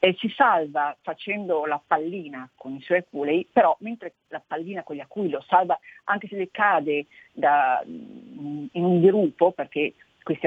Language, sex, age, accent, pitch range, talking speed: Italian, female, 40-59, native, 150-210 Hz, 165 wpm